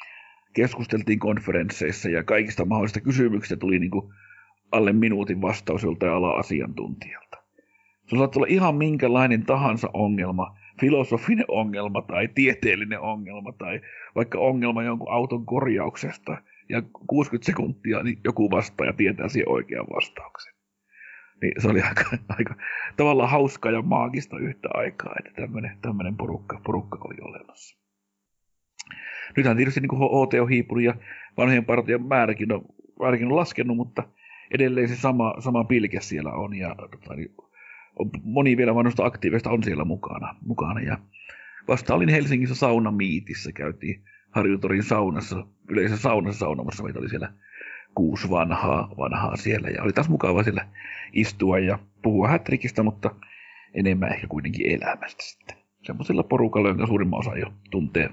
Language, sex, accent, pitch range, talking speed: Finnish, male, native, 100-125 Hz, 135 wpm